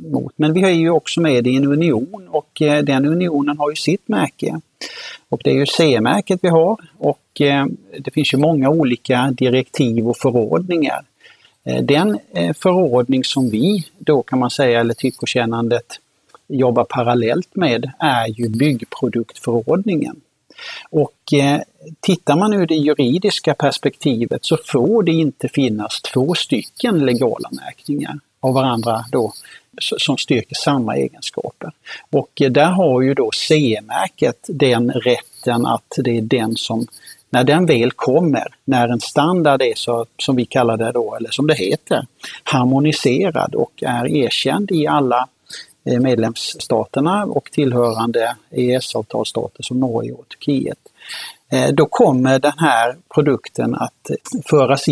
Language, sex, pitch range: Swedish, male, 120-155 Hz